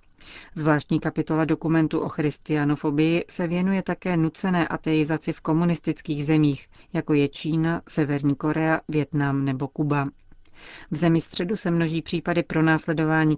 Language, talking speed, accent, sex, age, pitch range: Czech, 130 wpm, native, female, 40-59, 150-165 Hz